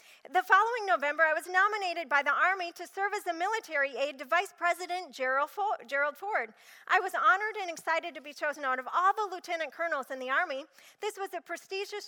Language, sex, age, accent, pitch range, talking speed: English, female, 40-59, American, 275-365 Hz, 205 wpm